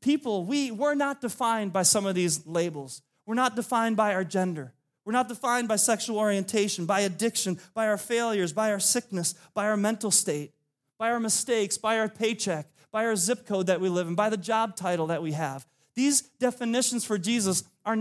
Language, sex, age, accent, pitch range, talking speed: English, male, 30-49, American, 140-210 Hz, 200 wpm